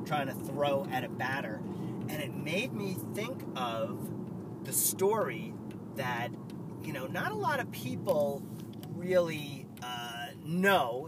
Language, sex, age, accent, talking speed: English, male, 30-49, American, 135 wpm